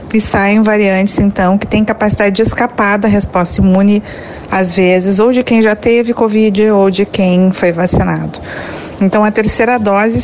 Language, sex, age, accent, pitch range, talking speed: Portuguese, female, 40-59, Brazilian, 175-220 Hz, 170 wpm